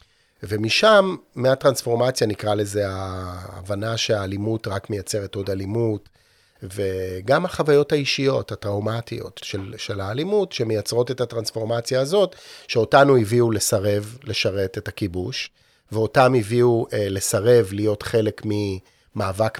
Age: 40-59